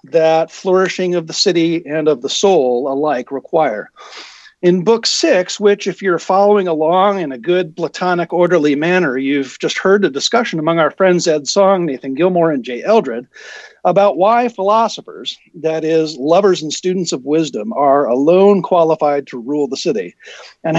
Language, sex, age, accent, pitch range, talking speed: English, male, 50-69, American, 160-205 Hz, 165 wpm